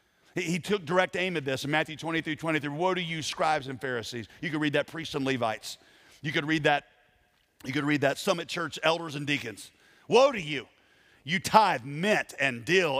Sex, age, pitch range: male, 40-59, 150-235 Hz